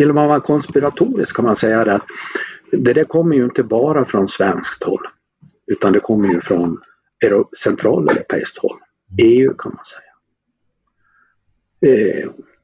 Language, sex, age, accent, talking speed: Swedish, male, 50-69, native, 140 wpm